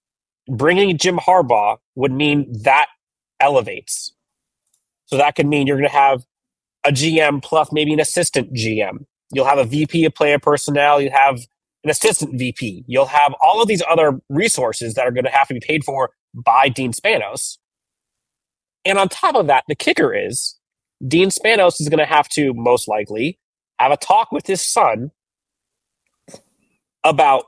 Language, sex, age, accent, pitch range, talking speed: English, male, 30-49, American, 130-155 Hz, 170 wpm